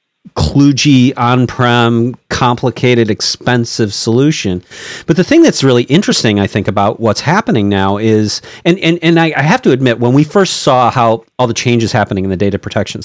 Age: 40-59